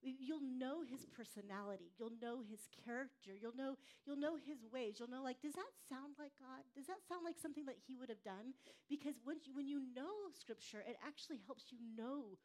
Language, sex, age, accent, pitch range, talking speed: English, female, 40-59, American, 230-285 Hz, 210 wpm